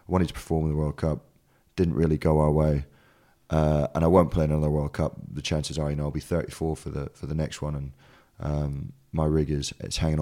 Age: 30-49